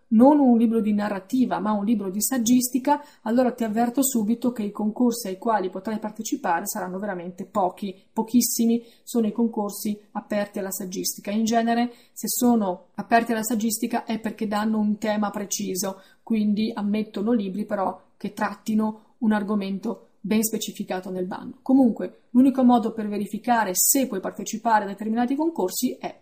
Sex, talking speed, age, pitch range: female, 155 wpm, 30-49, 205-240 Hz